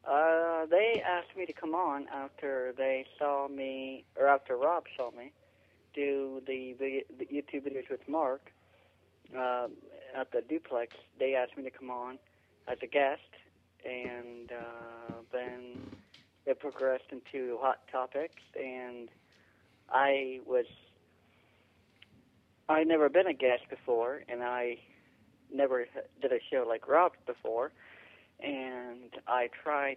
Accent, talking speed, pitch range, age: American, 130 wpm, 120-140 Hz, 40-59